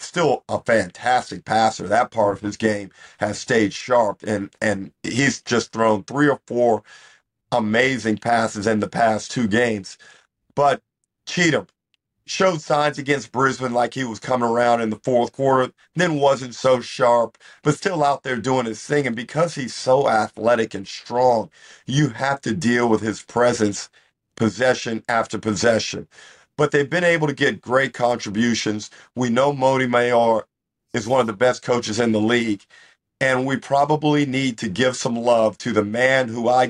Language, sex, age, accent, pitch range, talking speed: English, male, 50-69, American, 110-135 Hz, 170 wpm